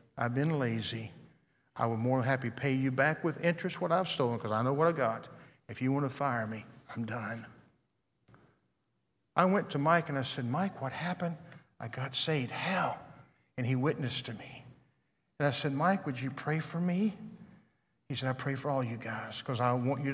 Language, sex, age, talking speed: English, male, 50-69, 205 wpm